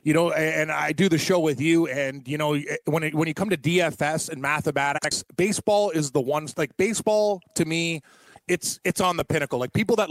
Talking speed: 220 wpm